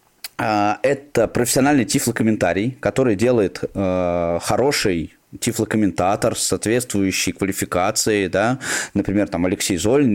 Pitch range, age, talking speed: 105-145 Hz, 20-39, 95 wpm